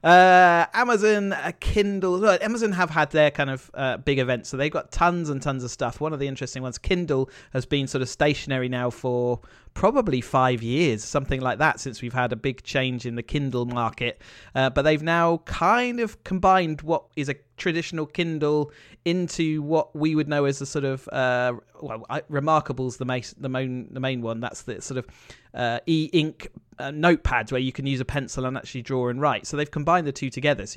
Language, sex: English, male